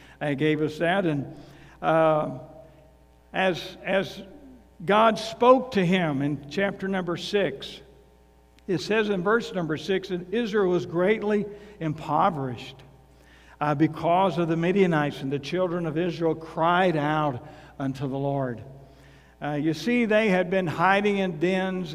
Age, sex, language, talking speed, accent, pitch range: 60-79, male, English, 140 wpm, American, 150-190 Hz